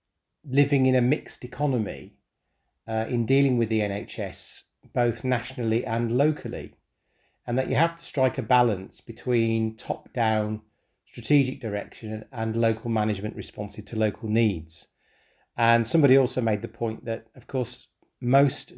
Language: English